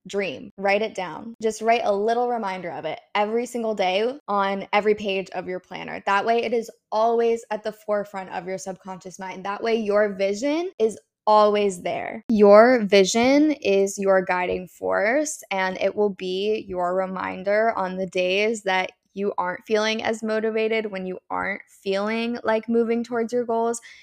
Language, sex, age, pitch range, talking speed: English, female, 10-29, 185-220 Hz, 170 wpm